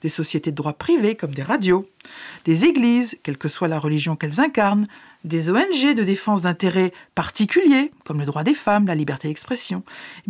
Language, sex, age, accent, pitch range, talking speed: French, female, 50-69, French, 180-265 Hz, 185 wpm